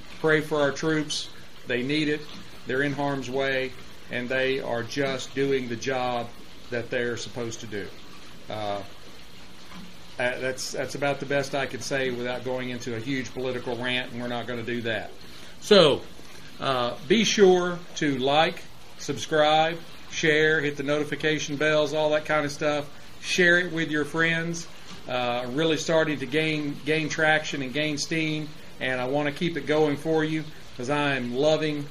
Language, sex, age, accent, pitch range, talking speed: English, male, 40-59, American, 125-155 Hz, 170 wpm